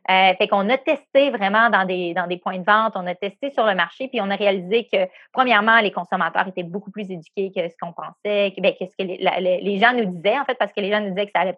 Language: French